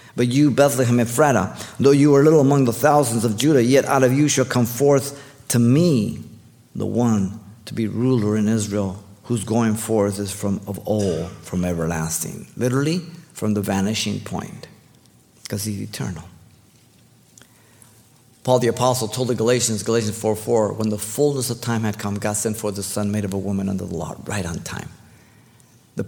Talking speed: 180 wpm